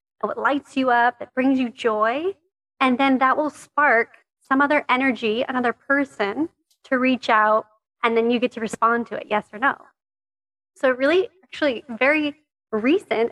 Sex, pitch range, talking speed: female, 220-280 Hz, 160 wpm